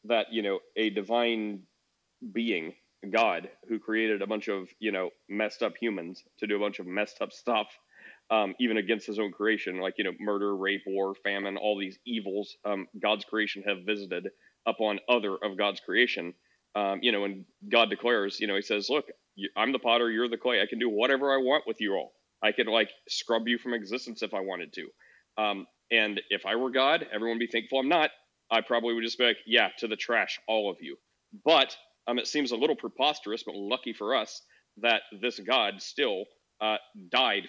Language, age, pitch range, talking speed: English, 30-49, 100-120 Hz, 210 wpm